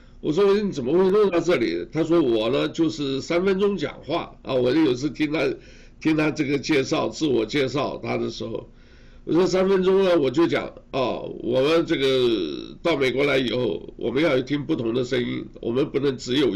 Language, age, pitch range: Chinese, 60-79, 130-180 Hz